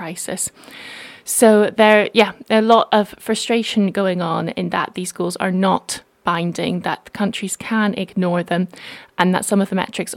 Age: 20-39